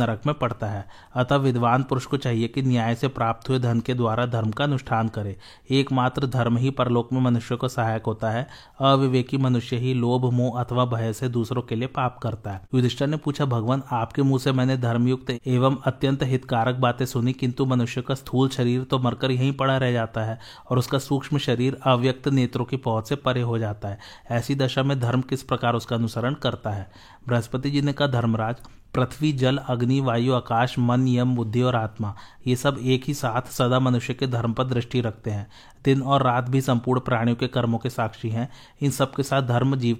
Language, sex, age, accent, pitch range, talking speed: Hindi, male, 30-49, native, 120-130 Hz, 110 wpm